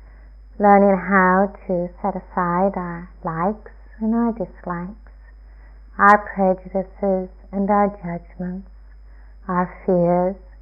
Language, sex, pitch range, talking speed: English, female, 175-225 Hz, 95 wpm